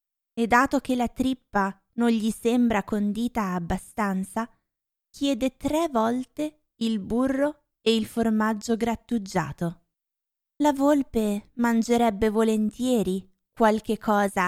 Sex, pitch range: female, 195-245 Hz